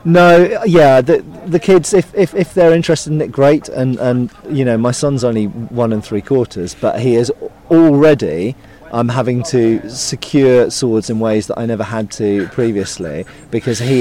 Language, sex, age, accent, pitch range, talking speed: English, male, 30-49, British, 100-140 Hz, 190 wpm